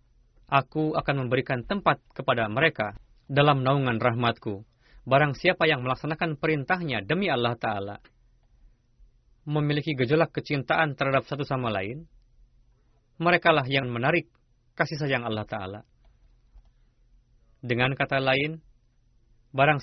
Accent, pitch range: native, 120-150 Hz